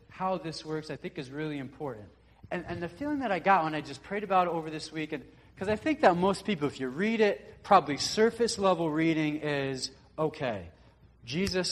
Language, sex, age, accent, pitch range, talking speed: English, male, 40-59, American, 130-170 Hz, 205 wpm